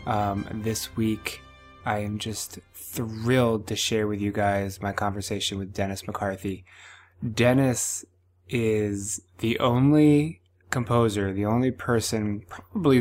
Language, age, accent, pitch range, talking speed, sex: English, 20-39, American, 95-115 Hz, 120 wpm, male